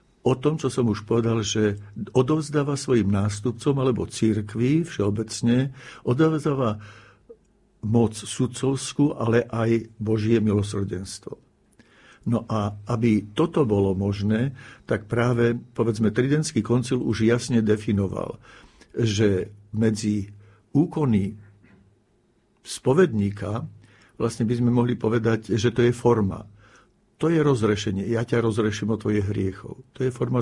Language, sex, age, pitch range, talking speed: Slovak, male, 60-79, 105-125 Hz, 115 wpm